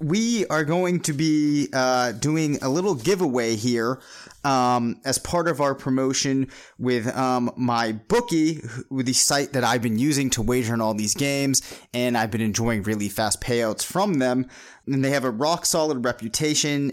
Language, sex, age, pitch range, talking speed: English, male, 30-49, 120-145 Hz, 175 wpm